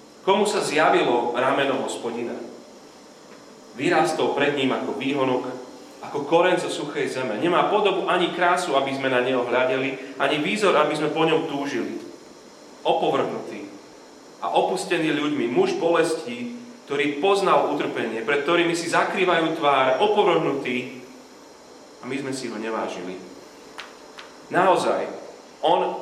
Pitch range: 125-170 Hz